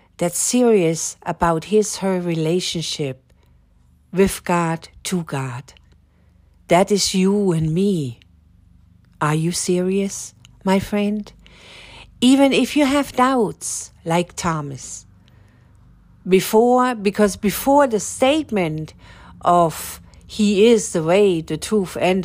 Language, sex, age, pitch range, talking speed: English, female, 60-79, 150-215 Hz, 110 wpm